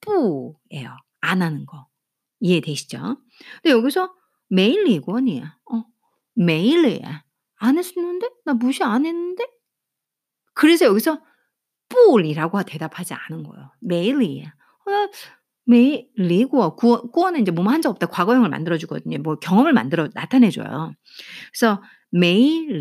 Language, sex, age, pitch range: Korean, female, 50-69, 185-305 Hz